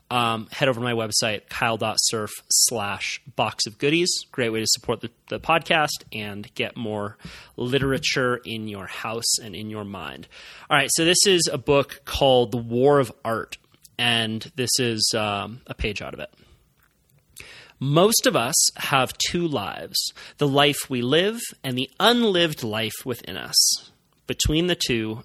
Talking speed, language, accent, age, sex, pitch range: 165 wpm, English, American, 30-49, male, 120-155 Hz